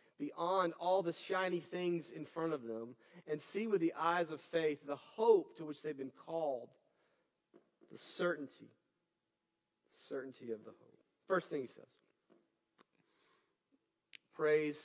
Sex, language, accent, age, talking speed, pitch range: male, English, American, 40-59, 135 wpm, 170-250 Hz